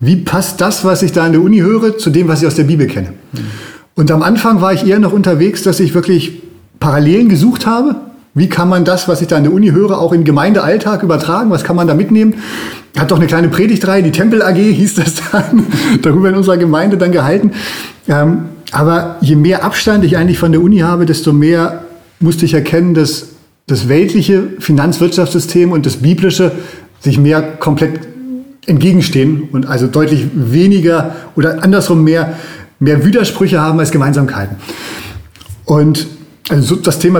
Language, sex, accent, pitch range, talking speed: German, male, German, 155-195 Hz, 180 wpm